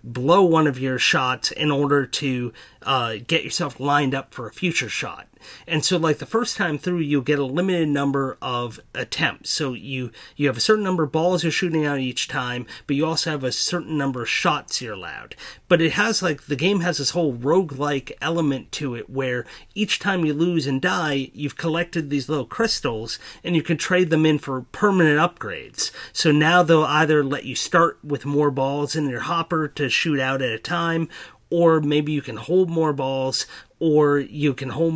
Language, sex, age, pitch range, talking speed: English, male, 30-49, 135-170 Hz, 205 wpm